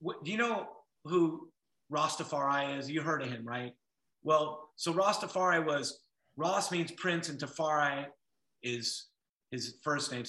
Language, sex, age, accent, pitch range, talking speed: English, male, 30-49, American, 145-180 Hz, 140 wpm